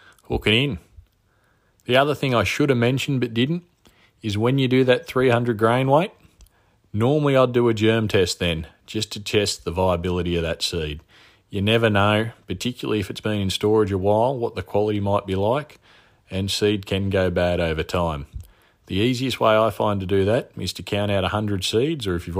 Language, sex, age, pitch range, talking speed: English, male, 40-59, 95-115 Hz, 200 wpm